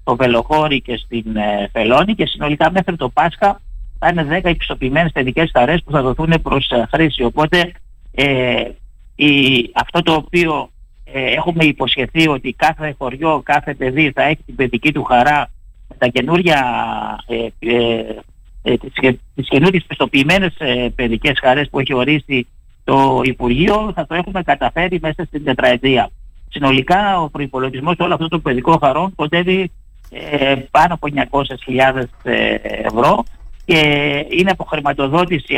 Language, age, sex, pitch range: Greek, 50-69, male, 130-165 Hz